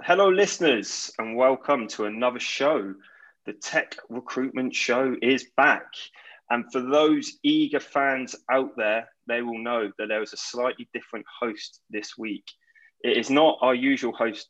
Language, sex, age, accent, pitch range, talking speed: English, male, 20-39, British, 115-170 Hz, 155 wpm